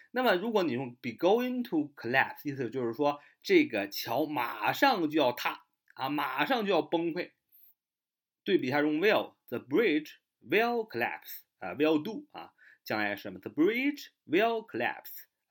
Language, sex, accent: Chinese, male, native